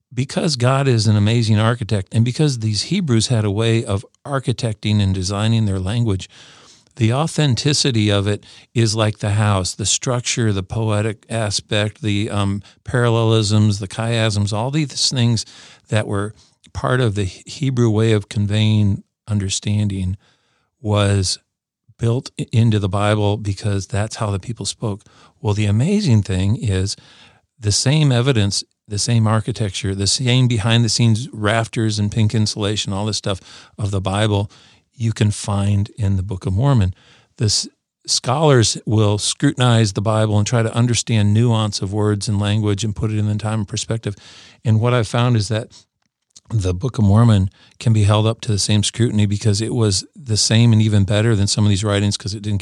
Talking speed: 170 wpm